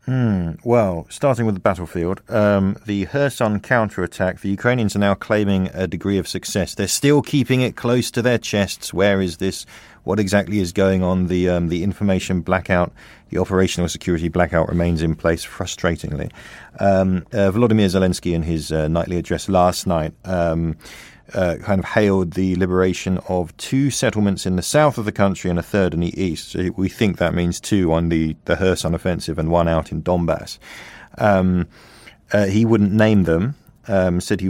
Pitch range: 85-100 Hz